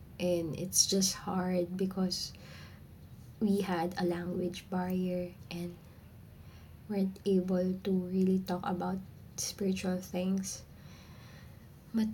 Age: 20-39